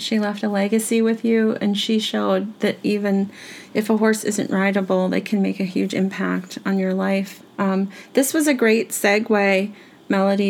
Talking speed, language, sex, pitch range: 185 wpm, English, female, 195-220 Hz